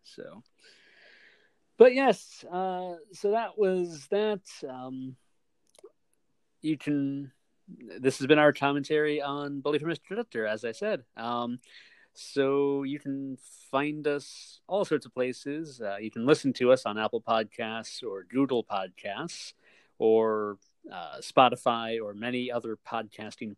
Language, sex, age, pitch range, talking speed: English, male, 40-59, 115-185 Hz, 135 wpm